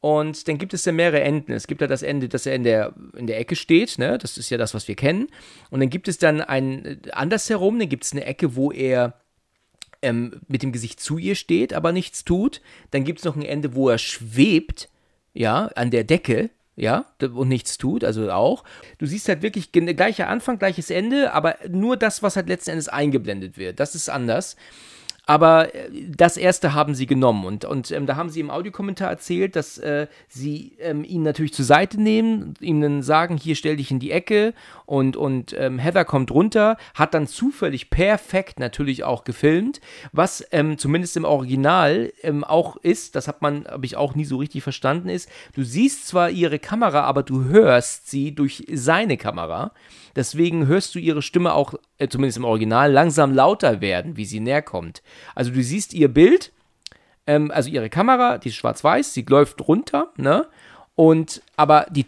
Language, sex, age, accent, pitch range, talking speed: German, male, 40-59, German, 135-175 Hz, 200 wpm